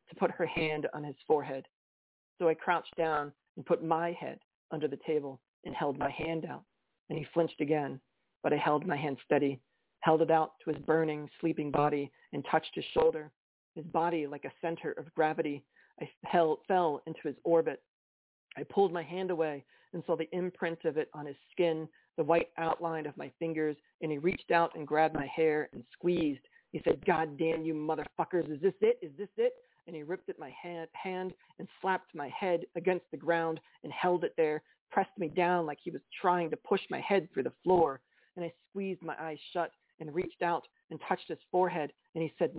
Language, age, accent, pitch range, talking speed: English, 40-59, American, 150-175 Hz, 210 wpm